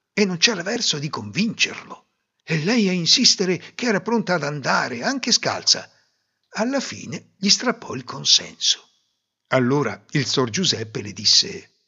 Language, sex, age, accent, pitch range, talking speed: Italian, male, 60-79, native, 130-200 Hz, 145 wpm